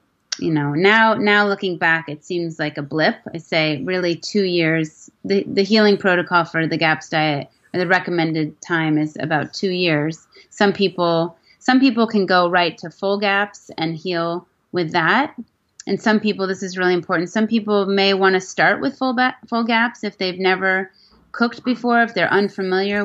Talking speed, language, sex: 185 wpm, English, female